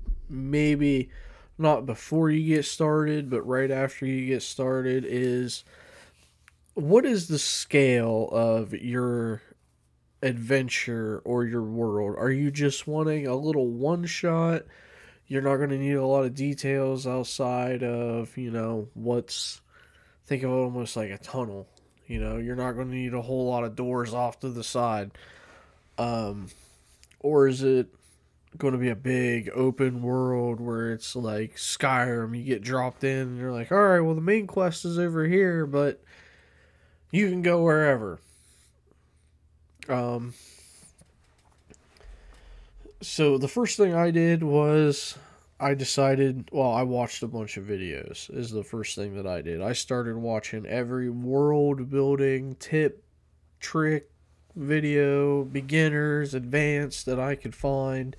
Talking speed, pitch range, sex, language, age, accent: 145 wpm, 110-140 Hz, male, English, 20-39, American